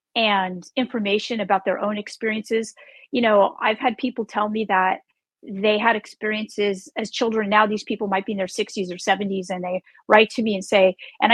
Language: English